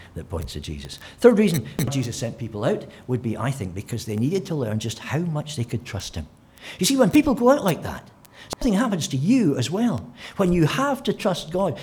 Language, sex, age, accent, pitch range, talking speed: English, male, 60-79, British, 115-170 Hz, 235 wpm